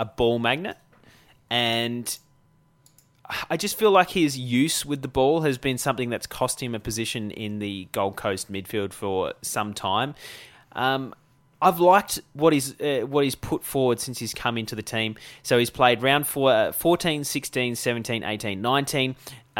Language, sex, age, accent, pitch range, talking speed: English, male, 20-39, Australian, 110-140 Hz, 170 wpm